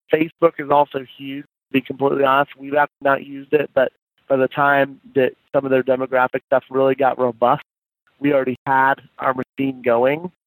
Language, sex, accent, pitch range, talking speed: English, male, American, 135-145 Hz, 190 wpm